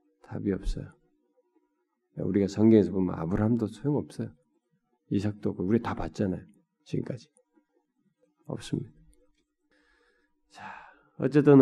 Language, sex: Korean, male